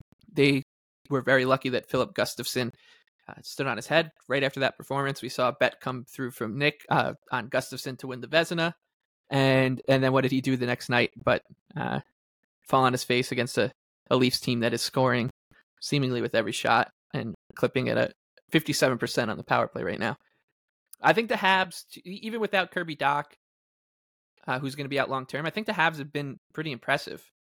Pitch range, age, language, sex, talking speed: 125-145 Hz, 20-39, English, male, 205 wpm